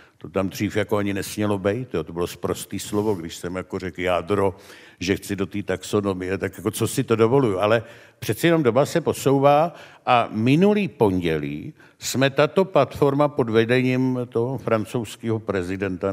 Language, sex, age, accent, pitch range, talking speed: Czech, male, 60-79, native, 100-120 Hz, 165 wpm